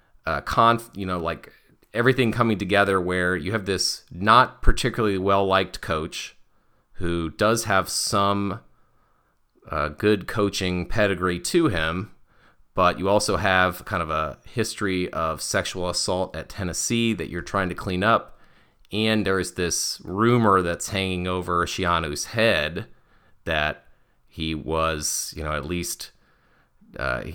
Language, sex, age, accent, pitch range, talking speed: English, male, 30-49, American, 85-100 Hz, 135 wpm